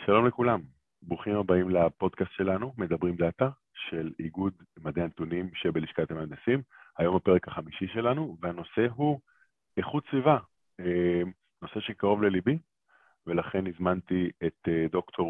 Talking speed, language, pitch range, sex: 115 wpm, Hebrew, 85-105 Hz, male